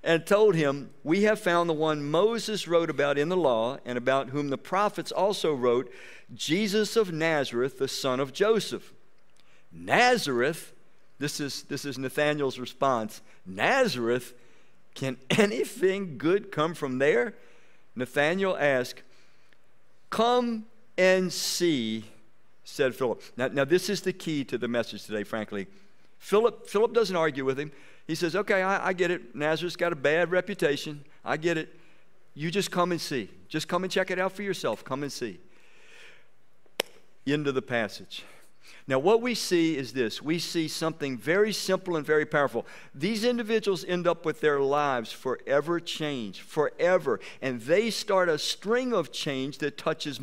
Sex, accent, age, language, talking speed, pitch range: male, American, 60-79, English, 160 wpm, 140-195 Hz